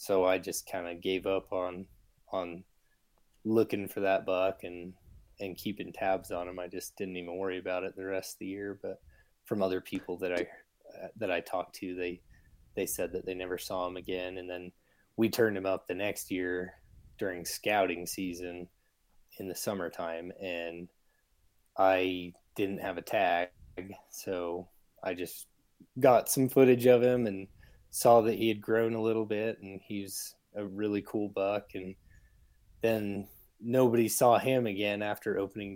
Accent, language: American, English